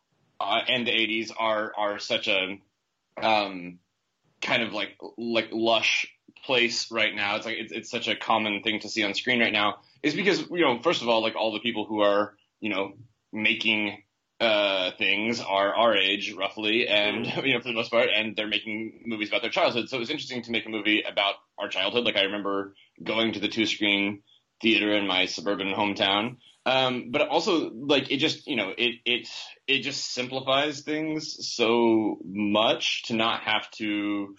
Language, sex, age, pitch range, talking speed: English, male, 20-39, 105-120 Hz, 190 wpm